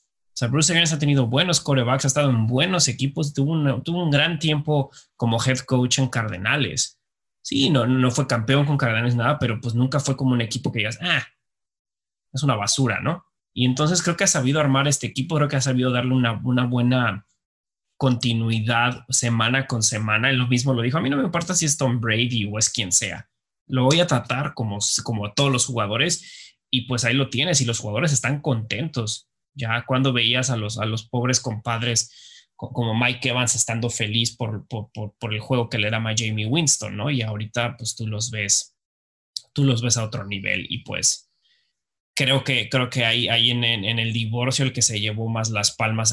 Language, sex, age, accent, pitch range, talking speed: Spanish, male, 20-39, Mexican, 115-135 Hz, 210 wpm